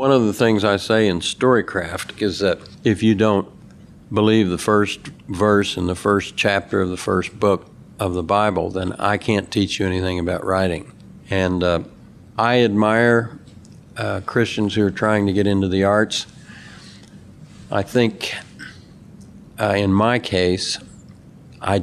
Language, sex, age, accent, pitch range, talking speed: English, male, 60-79, American, 95-110 Hz, 155 wpm